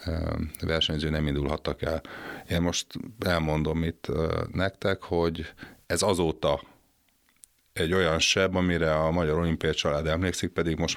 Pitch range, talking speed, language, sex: 75-85 Hz, 125 wpm, Hungarian, male